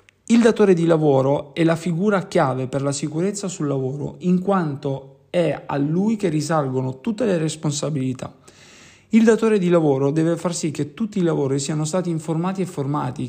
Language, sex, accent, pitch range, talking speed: Italian, male, native, 140-180 Hz, 175 wpm